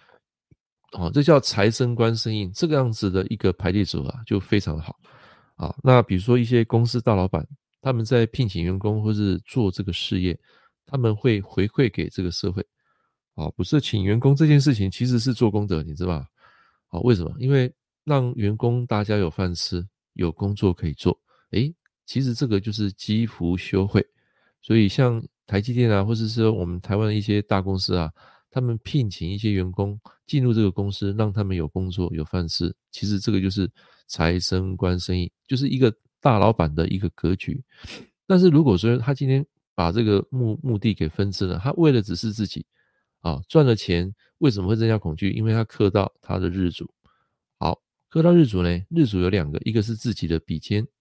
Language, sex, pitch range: Chinese, male, 95-120 Hz